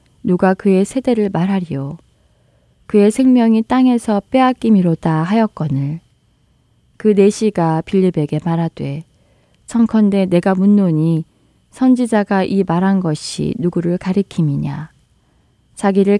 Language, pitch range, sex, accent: Korean, 155-205 Hz, female, native